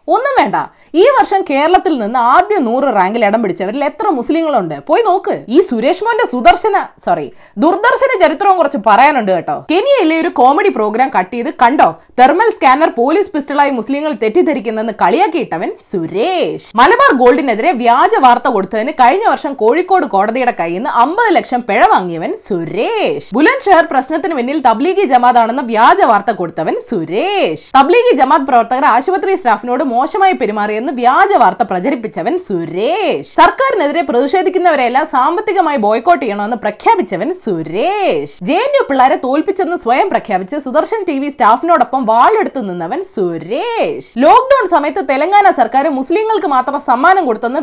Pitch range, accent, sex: 245-375 Hz, native, female